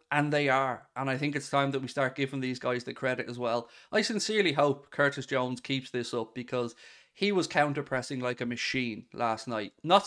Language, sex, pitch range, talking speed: English, male, 135-160 Hz, 215 wpm